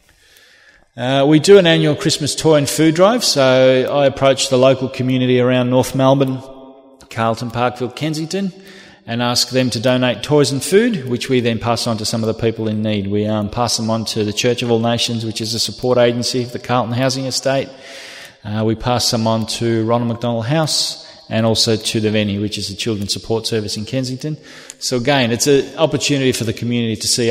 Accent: Australian